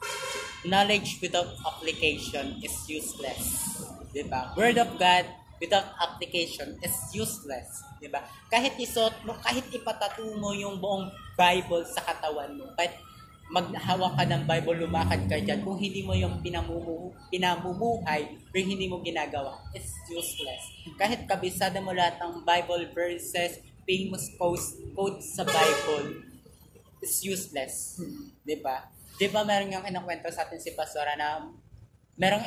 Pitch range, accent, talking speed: 155-195 Hz, native, 135 wpm